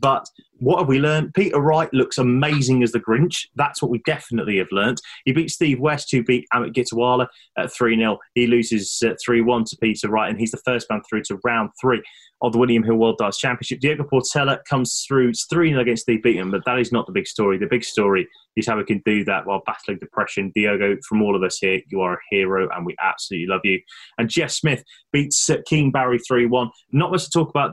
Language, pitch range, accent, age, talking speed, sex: English, 110-135 Hz, British, 20-39, 230 wpm, male